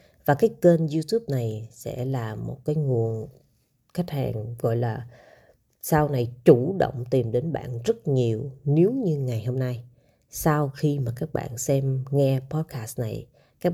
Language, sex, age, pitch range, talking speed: Vietnamese, female, 20-39, 125-155 Hz, 165 wpm